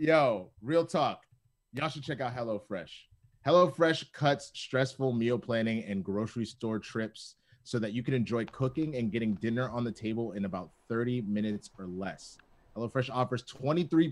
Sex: male